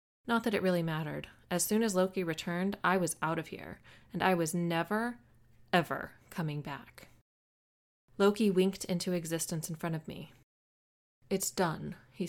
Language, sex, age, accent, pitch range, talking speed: English, female, 20-39, American, 160-185 Hz, 160 wpm